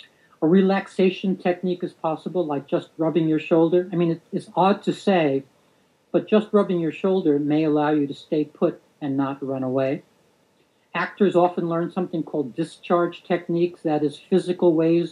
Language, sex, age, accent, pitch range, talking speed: English, male, 60-79, American, 150-175 Hz, 165 wpm